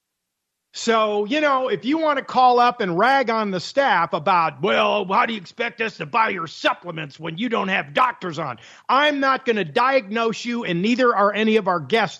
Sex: male